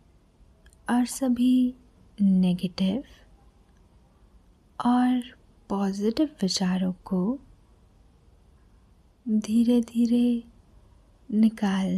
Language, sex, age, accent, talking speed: Hindi, female, 20-39, native, 50 wpm